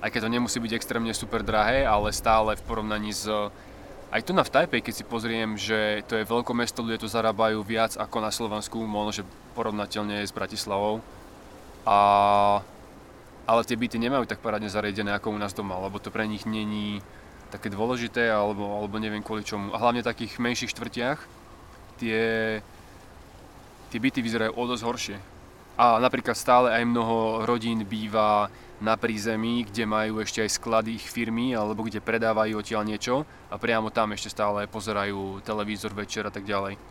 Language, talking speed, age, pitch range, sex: Slovak, 170 wpm, 20-39, 105-115 Hz, male